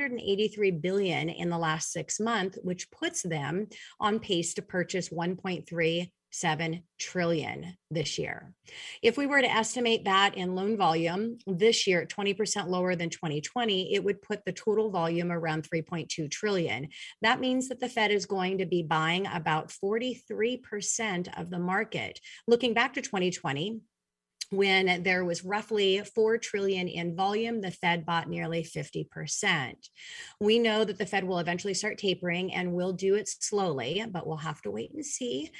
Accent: American